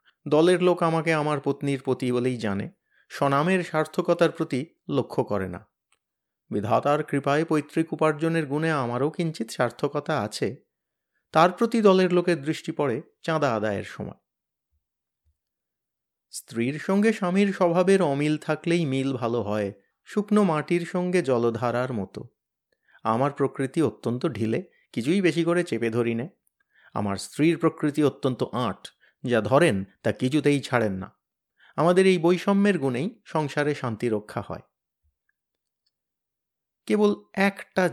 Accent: native